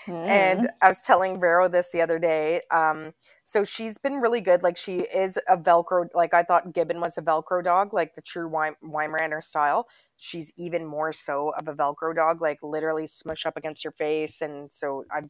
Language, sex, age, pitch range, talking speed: English, female, 20-39, 155-175 Hz, 200 wpm